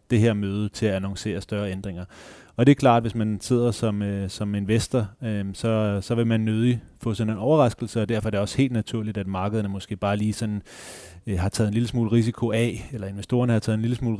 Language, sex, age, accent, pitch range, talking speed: Danish, male, 30-49, native, 100-115 Hz, 245 wpm